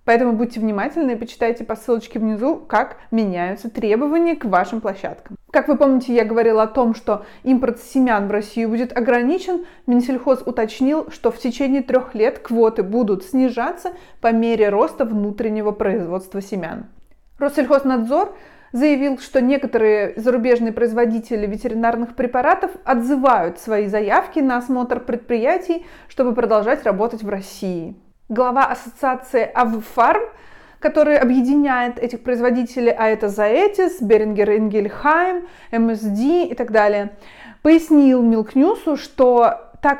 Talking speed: 125 wpm